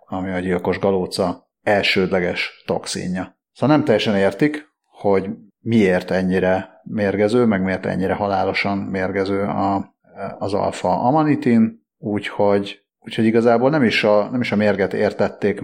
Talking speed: 125 wpm